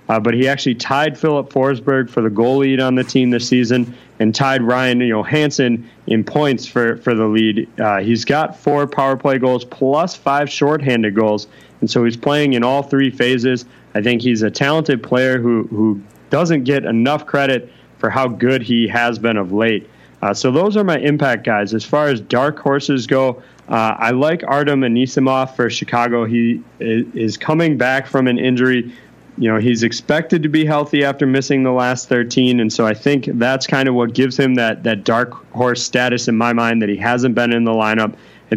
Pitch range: 115-135 Hz